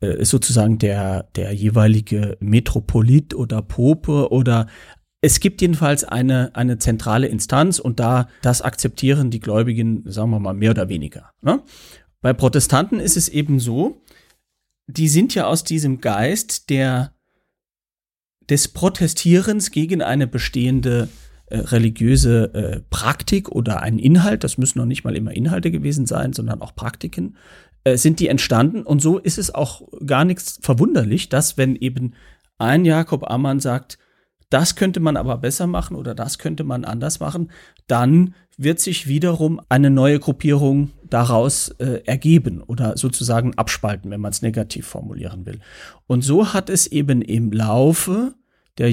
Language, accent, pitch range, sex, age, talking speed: German, German, 115-160 Hz, male, 40-59, 150 wpm